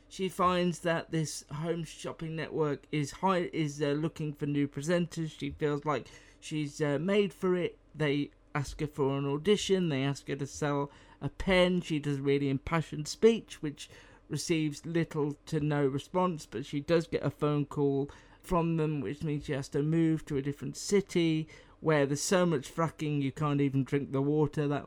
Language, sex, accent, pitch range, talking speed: English, male, British, 140-165 Hz, 190 wpm